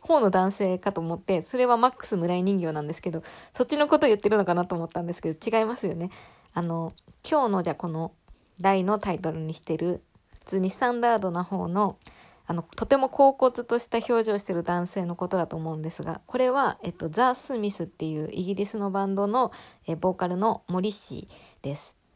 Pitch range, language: 175-235 Hz, Japanese